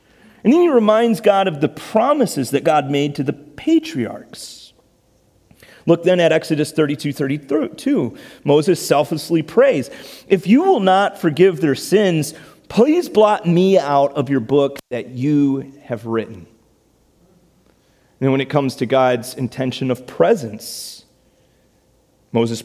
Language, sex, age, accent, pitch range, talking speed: English, male, 30-49, American, 110-145 Hz, 135 wpm